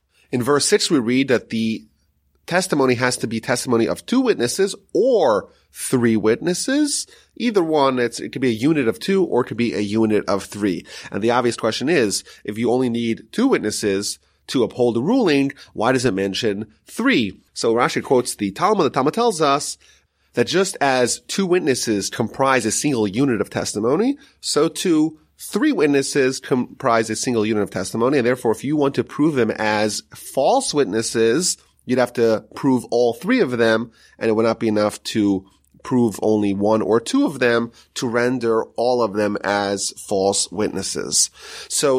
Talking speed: 180 wpm